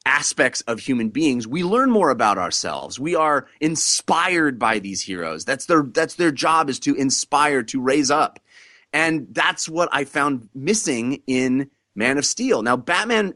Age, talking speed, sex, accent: 30-49, 170 wpm, male, American